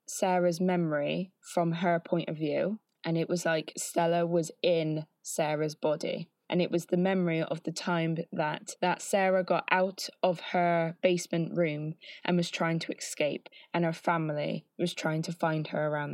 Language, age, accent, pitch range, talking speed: English, 20-39, British, 165-190 Hz, 175 wpm